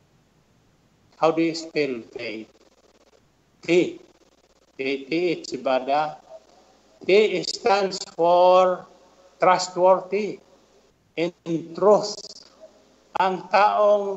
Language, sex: Filipino, male